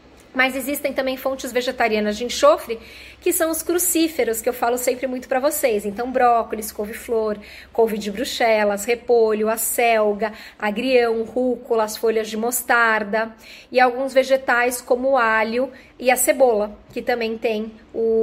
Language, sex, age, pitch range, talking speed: Portuguese, female, 20-39, 225-265 Hz, 150 wpm